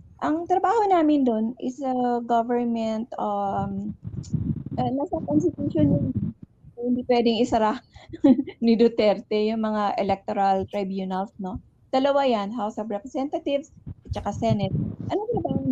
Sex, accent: female, native